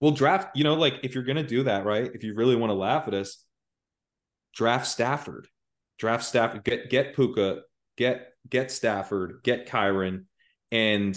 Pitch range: 95-115 Hz